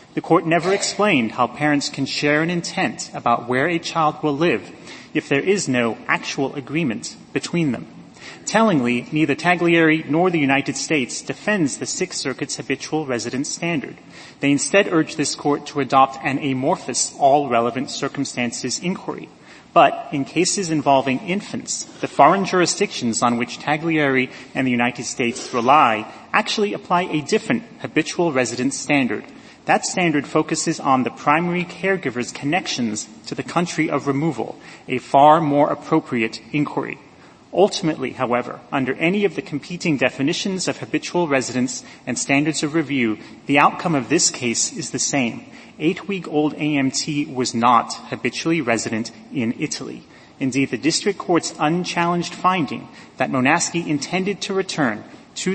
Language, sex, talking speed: English, male, 145 wpm